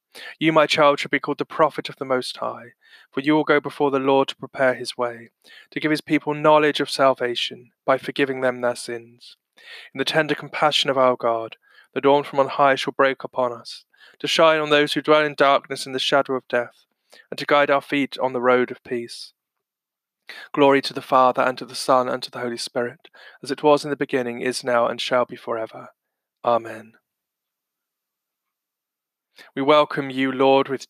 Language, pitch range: English, 130-150 Hz